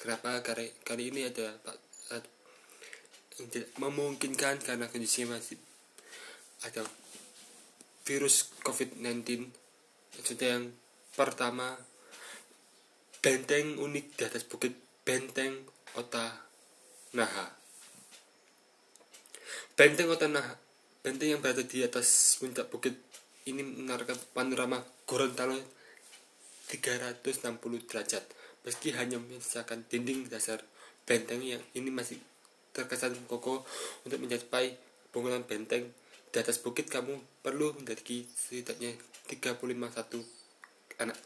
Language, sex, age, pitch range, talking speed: Indonesian, male, 20-39, 120-135 Hz, 95 wpm